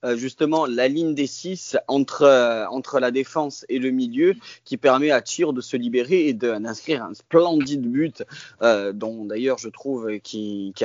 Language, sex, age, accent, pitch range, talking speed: French, male, 20-39, French, 115-145 Hz, 185 wpm